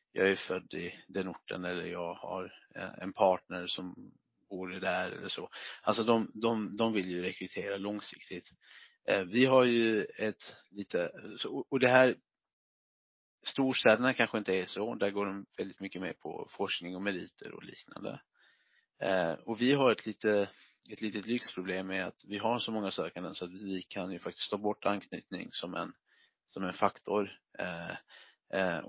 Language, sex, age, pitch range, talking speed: Swedish, male, 30-49, 95-110 Hz, 160 wpm